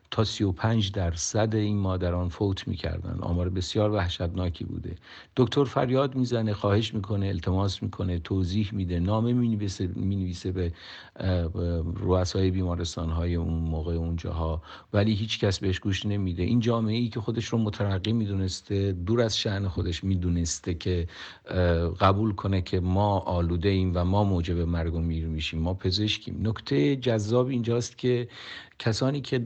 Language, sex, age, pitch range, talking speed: Persian, male, 50-69, 90-110 Hz, 145 wpm